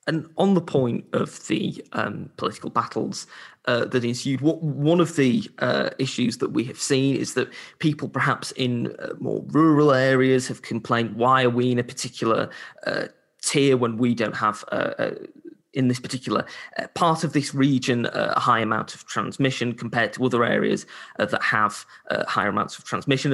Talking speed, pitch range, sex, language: 185 wpm, 120-150 Hz, male, English